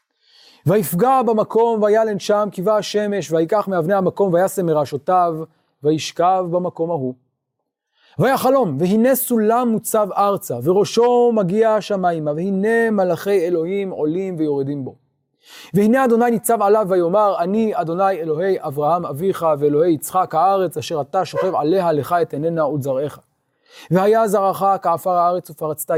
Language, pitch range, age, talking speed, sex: Hebrew, 160-215 Hz, 30-49, 125 wpm, male